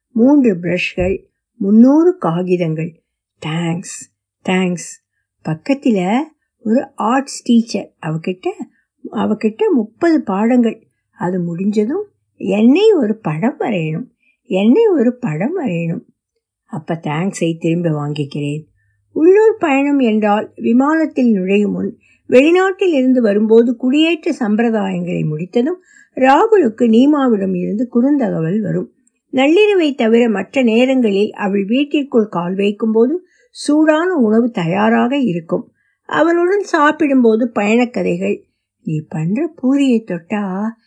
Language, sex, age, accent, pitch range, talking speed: Tamil, female, 60-79, native, 185-270 Hz, 70 wpm